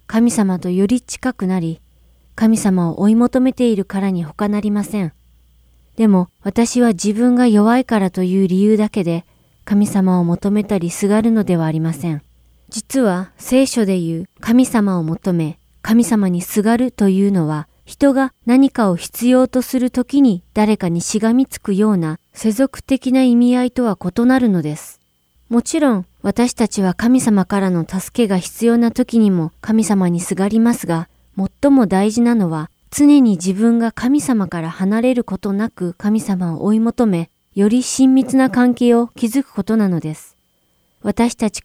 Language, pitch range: Japanese, 180-235 Hz